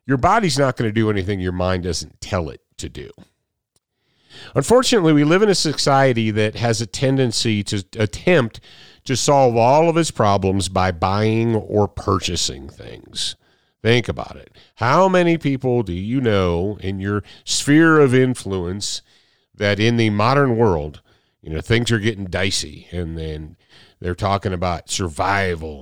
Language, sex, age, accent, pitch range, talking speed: English, male, 50-69, American, 95-140 Hz, 160 wpm